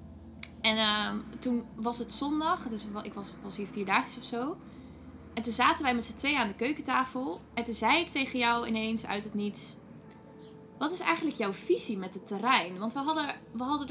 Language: Dutch